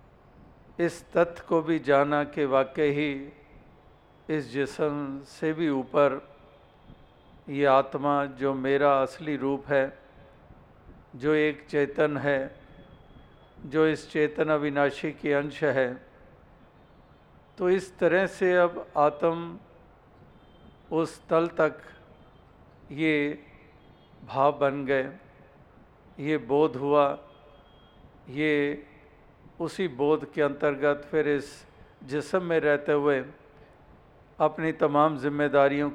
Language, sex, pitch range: Hindi, male, 140-155 Hz